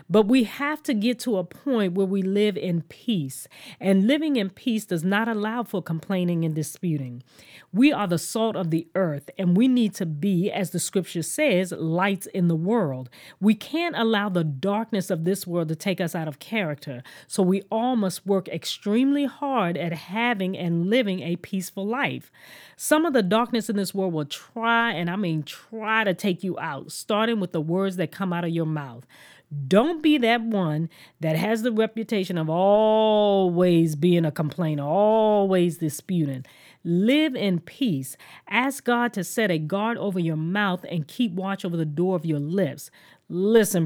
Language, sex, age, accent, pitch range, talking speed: English, female, 40-59, American, 165-220 Hz, 185 wpm